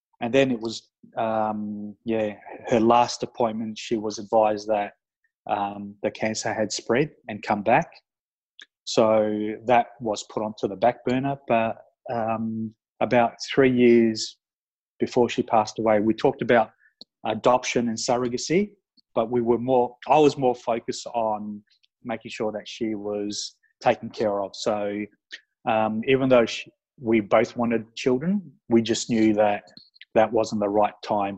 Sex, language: male, English